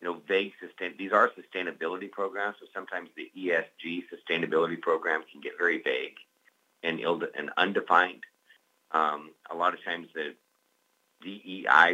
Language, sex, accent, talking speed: English, male, American, 140 wpm